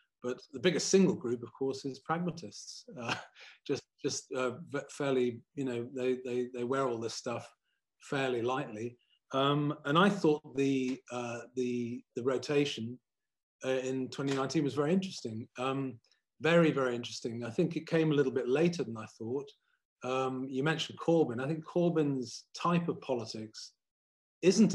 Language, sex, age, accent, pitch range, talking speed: English, male, 30-49, British, 115-140 Hz, 160 wpm